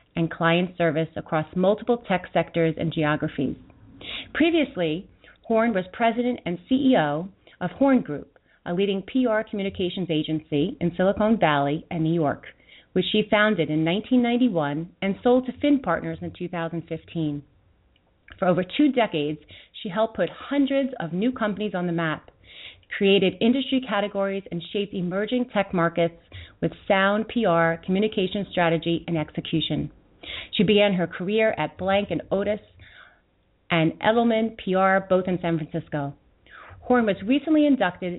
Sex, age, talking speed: female, 30-49, 140 wpm